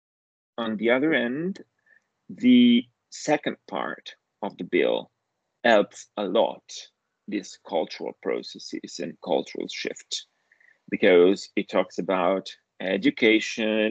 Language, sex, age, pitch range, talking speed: English, male, 40-59, 105-120 Hz, 105 wpm